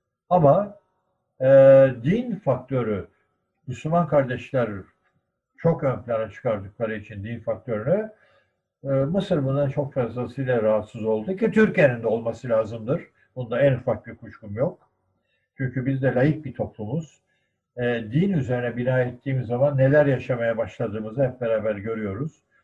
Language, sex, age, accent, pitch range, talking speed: Turkish, male, 60-79, native, 130-170 Hz, 125 wpm